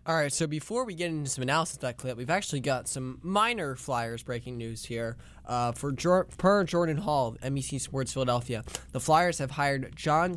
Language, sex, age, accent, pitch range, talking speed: English, male, 10-29, American, 120-155 Hz, 210 wpm